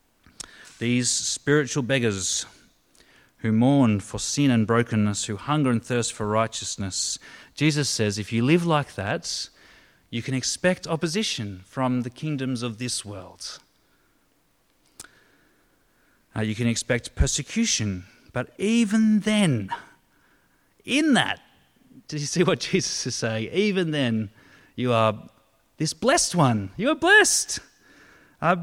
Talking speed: 125 wpm